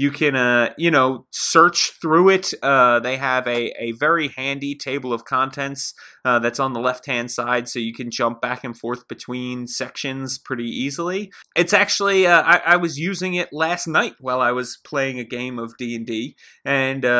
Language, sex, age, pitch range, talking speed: English, male, 30-49, 120-160 Hz, 190 wpm